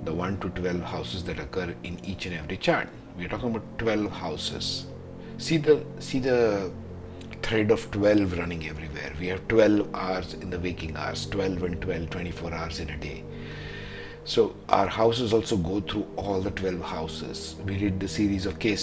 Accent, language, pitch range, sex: Indian, English, 85-105 Hz, male